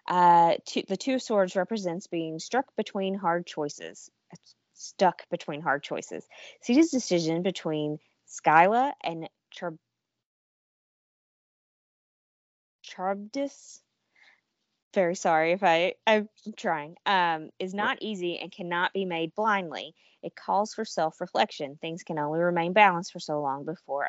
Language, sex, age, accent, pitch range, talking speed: English, female, 20-39, American, 150-180 Hz, 120 wpm